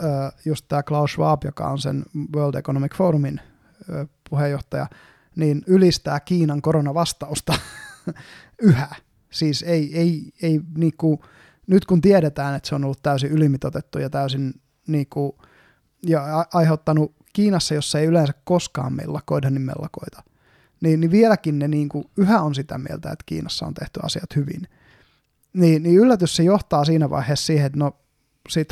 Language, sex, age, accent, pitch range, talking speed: Finnish, male, 20-39, native, 145-170 Hz, 150 wpm